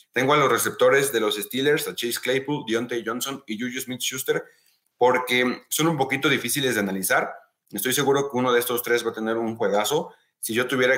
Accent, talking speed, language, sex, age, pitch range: Mexican, 210 wpm, Spanish, male, 30-49, 105-125 Hz